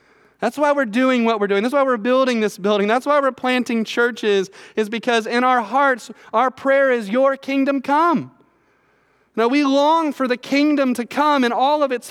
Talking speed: 205 wpm